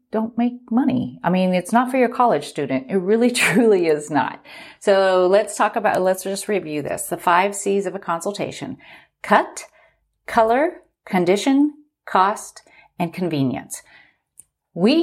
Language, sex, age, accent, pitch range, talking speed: English, female, 40-59, American, 160-230 Hz, 150 wpm